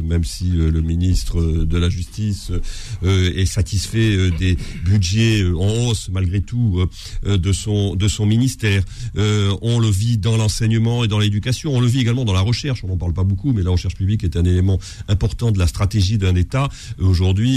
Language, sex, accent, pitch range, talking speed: French, male, French, 95-130 Hz, 180 wpm